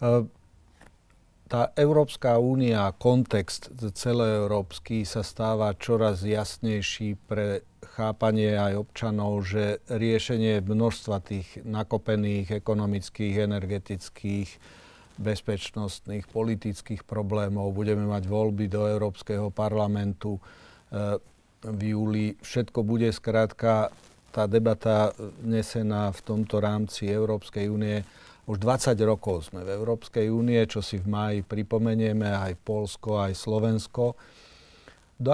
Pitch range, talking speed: 100-115 Hz, 105 wpm